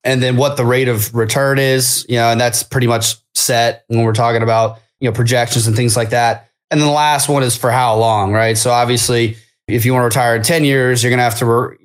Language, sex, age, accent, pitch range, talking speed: English, male, 20-39, American, 115-135 Hz, 260 wpm